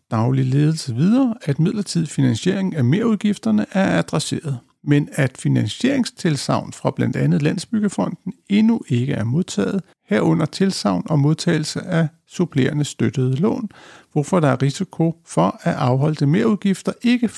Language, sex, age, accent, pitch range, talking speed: Danish, male, 60-79, native, 135-190 Hz, 130 wpm